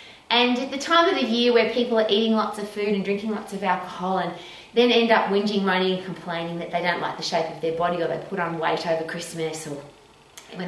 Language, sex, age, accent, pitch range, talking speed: English, female, 30-49, Australian, 170-220 Hz, 255 wpm